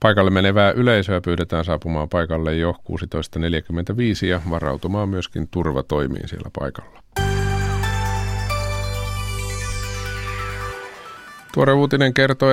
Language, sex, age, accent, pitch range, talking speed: Finnish, male, 50-69, native, 85-100 Hz, 80 wpm